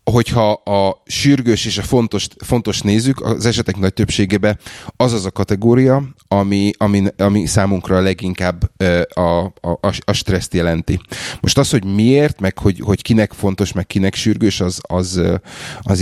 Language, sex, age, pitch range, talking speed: Hungarian, male, 30-49, 90-105 Hz, 160 wpm